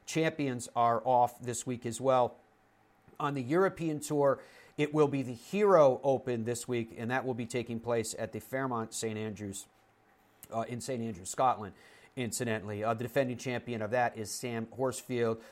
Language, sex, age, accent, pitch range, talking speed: English, male, 40-59, American, 115-135 Hz, 175 wpm